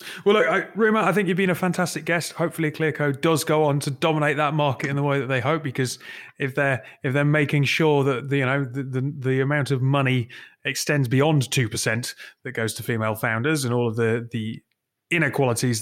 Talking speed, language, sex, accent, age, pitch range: 220 wpm, English, male, British, 30-49, 130-165 Hz